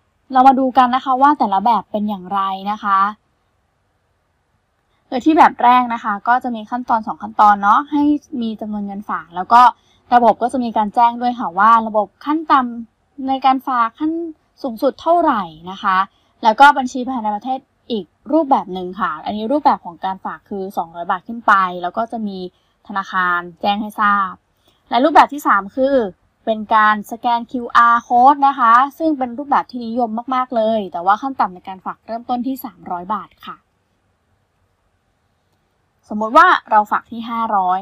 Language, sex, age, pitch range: Thai, female, 20-39, 200-260 Hz